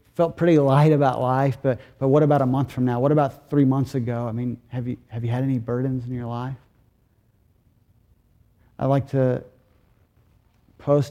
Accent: American